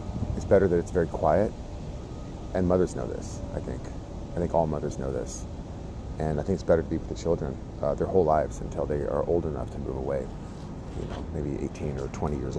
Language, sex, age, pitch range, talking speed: English, male, 30-49, 85-110 Hz, 220 wpm